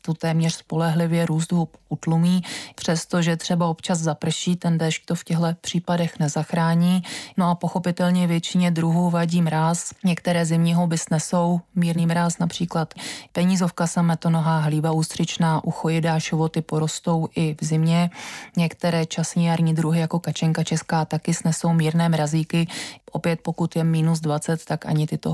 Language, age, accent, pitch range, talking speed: Czech, 20-39, native, 165-180 Hz, 140 wpm